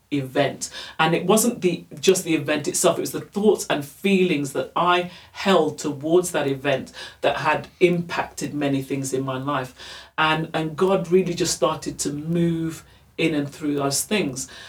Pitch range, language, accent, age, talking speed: 155-185 Hz, English, British, 40-59, 170 wpm